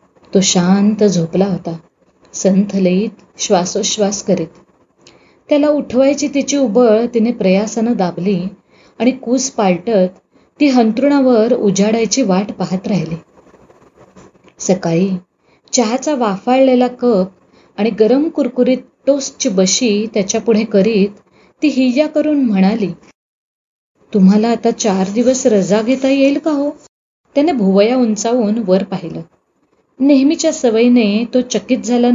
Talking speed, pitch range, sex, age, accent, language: 110 wpm, 190-260 Hz, female, 30-49, native, Marathi